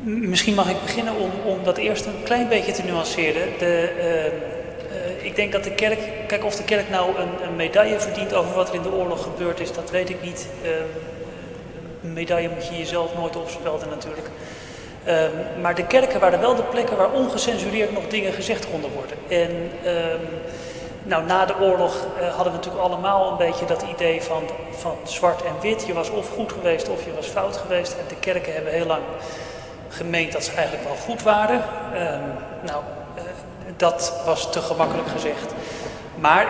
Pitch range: 170-215 Hz